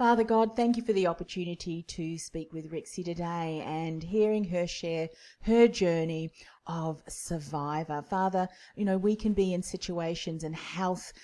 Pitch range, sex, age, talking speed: 165-195 Hz, female, 40-59, 160 wpm